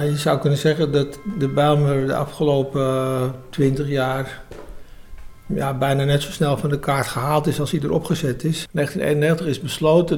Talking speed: 170 wpm